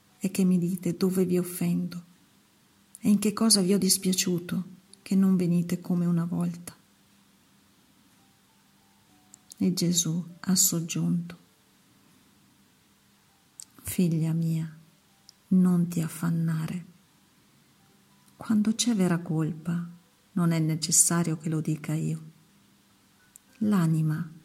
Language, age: Italian, 50-69